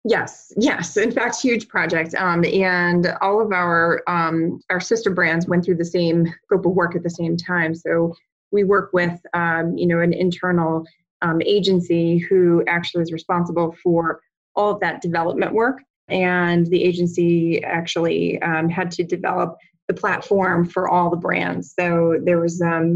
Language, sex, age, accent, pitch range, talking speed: English, female, 20-39, American, 165-180 Hz, 170 wpm